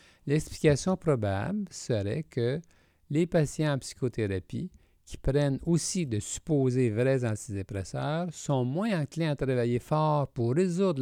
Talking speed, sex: 125 wpm, male